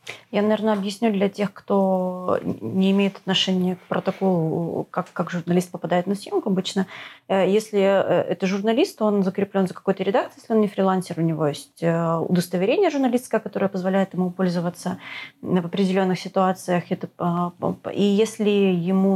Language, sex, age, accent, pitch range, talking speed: Russian, female, 30-49, native, 180-210 Hz, 145 wpm